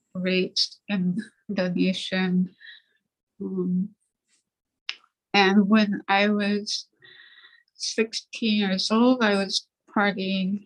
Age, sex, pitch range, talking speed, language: 20-39, female, 190-220 Hz, 80 wpm, English